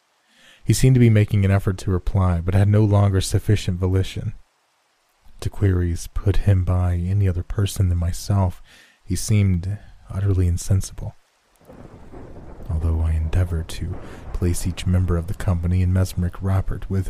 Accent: American